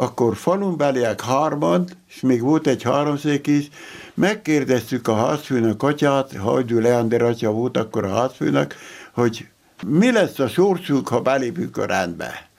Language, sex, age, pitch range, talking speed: Hungarian, male, 60-79, 110-140 Hz, 145 wpm